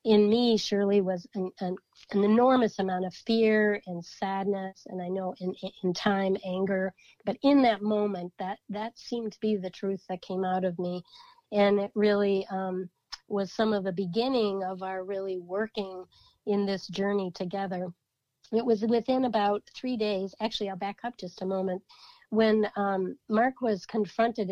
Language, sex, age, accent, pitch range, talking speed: English, female, 40-59, American, 185-215 Hz, 165 wpm